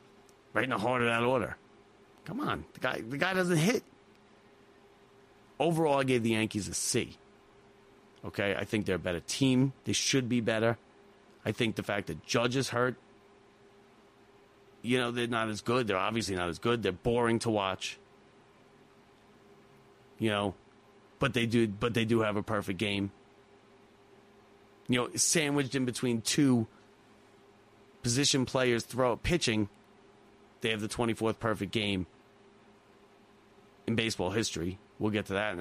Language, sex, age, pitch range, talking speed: English, male, 30-49, 105-125 Hz, 150 wpm